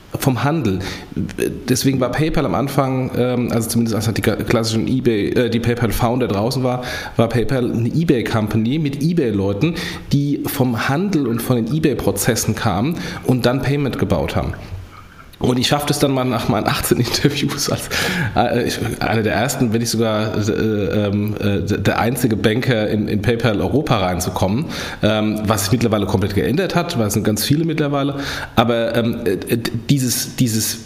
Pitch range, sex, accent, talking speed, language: 110-135 Hz, male, German, 165 wpm, German